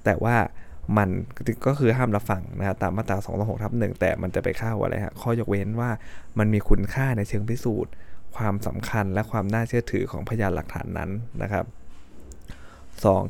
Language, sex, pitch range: Thai, male, 95-115 Hz